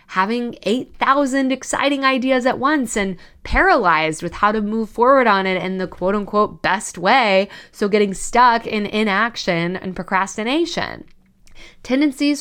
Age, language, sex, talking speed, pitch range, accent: 20-39, English, female, 135 wpm, 205-275 Hz, American